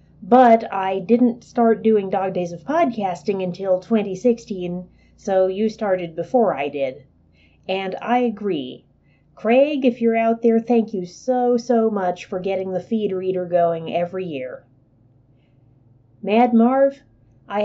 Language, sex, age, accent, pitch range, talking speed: English, female, 30-49, American, 170-230 Hz, 140 wpm